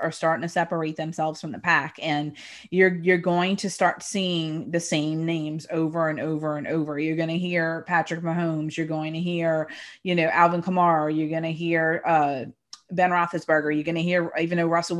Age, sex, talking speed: 30-49, female, 205 wpm